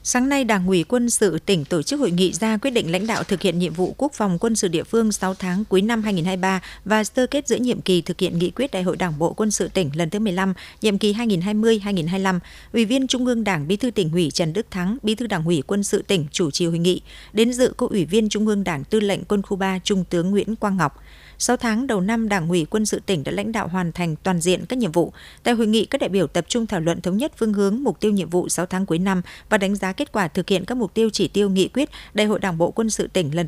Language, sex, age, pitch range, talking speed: Vietnamese, female, 60-79, 180-220 Hz, 285 wpm